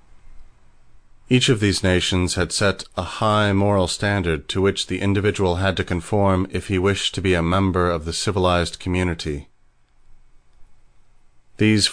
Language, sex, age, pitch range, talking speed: English, male, 40-59, 90-105 Hz, 145 wpm